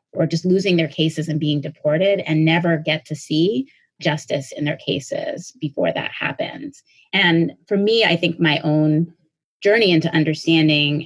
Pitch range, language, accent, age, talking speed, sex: 140-160 Hz, English, American, 30-49, 165 wpm, female